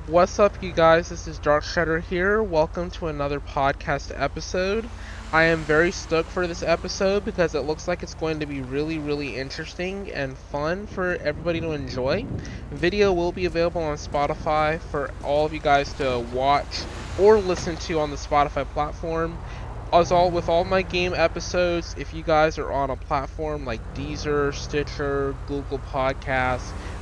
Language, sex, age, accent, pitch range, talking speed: English, male, 20-39, American, 125-160 Hz, 170 wpm